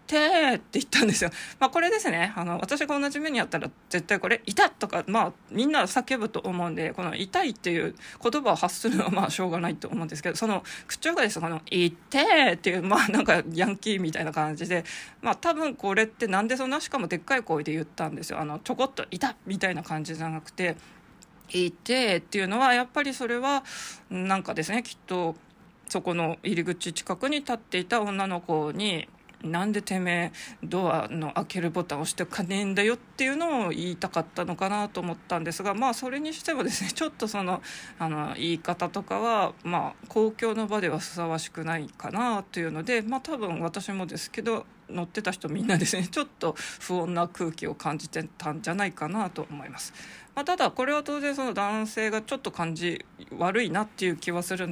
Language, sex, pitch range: Japanese, female, 170-235 Hz